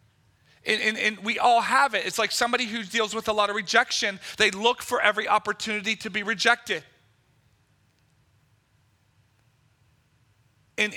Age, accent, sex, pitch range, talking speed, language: 40-59, American, male, 170-230 Hz, 140 wpm, English